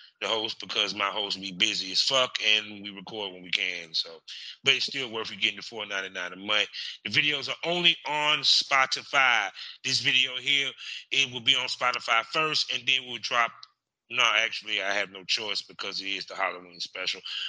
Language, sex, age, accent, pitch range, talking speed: English, male, 30-49, American, 100-135 Hz, 205 wpm